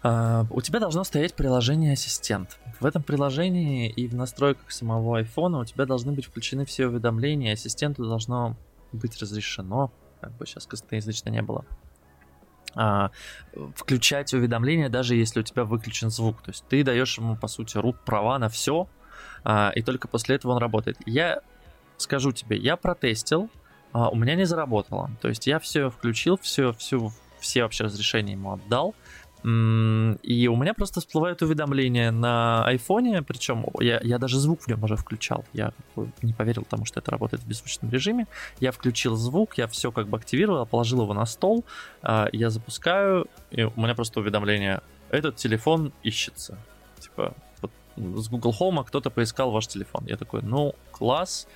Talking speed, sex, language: 160 wpm, male, Russian